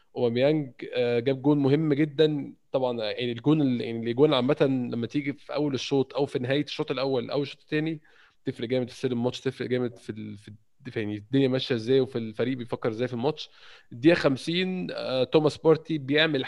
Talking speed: 170 wpm